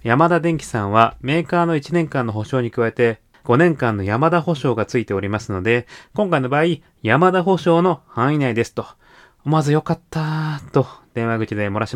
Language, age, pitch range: Japanese, 30-49, 125-170 Hz